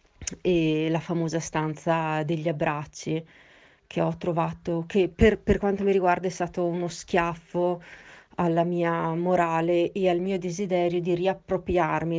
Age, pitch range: 30-49, 170-190 Hz